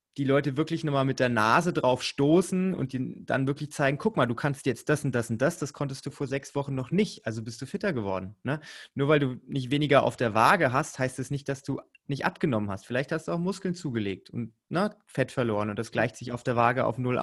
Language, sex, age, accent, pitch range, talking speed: German, male, 30-49, German, 115-140 Hz, 260 wpm